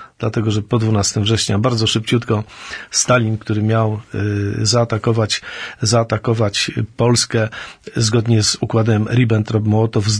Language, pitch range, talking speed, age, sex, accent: Polish, 110-125 Hz, 110 wpm, 40-59, male, native